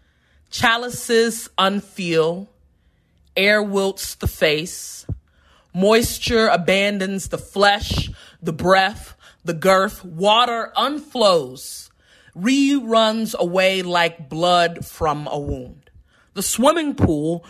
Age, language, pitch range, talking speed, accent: 30-49, English, 140-205 Hz, 90 wpm, American